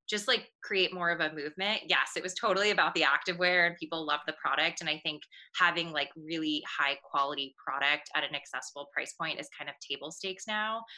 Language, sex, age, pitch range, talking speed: English, female, 20-39, 155-190 Hz, 215 wpm